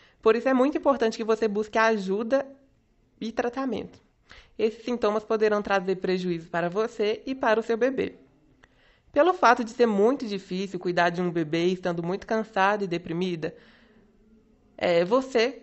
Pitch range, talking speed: 185-240 Hz, 150 wpm